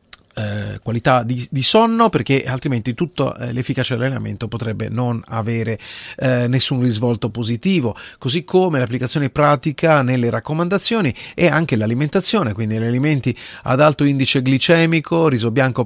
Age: 40-59